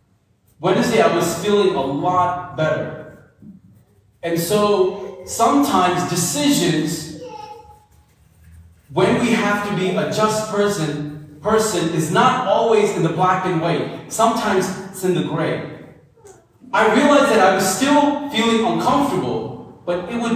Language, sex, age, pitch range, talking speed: English, male, 30-49, 170-235 Hz, 125 wpm